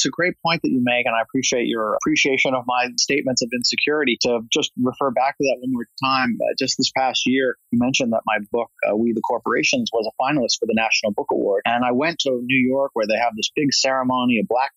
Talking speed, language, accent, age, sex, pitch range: 250 wpm, English, American, 30-49, male, 120-165 Hz